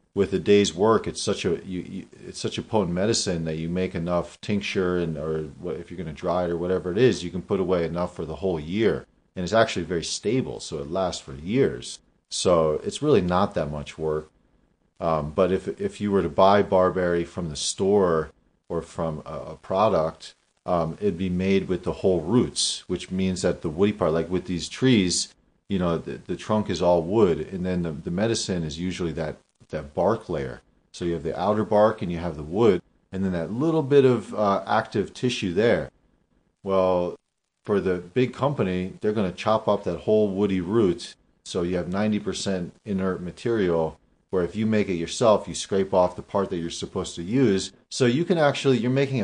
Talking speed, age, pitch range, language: 210 wpm, 40-59, 85-100 Hz, English